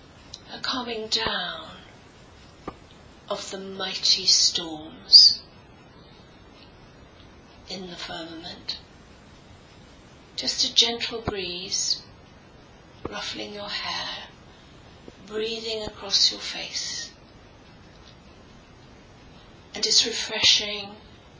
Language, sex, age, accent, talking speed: English, female, 40-59, British, 65 wpm